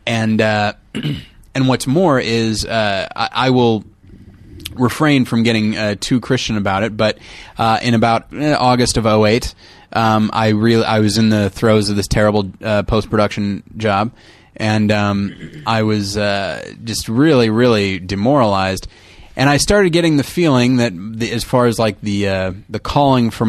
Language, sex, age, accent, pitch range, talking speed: English, male, 20-39, American, 105-125 Hz, 165 wpm